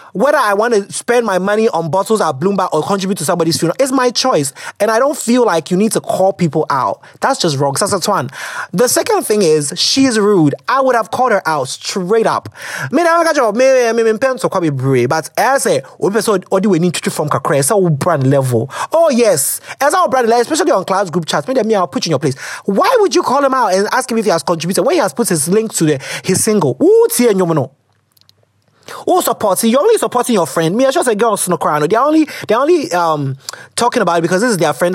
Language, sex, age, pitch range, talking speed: English, male, 30-49, 160-250 Hz, 215 wpm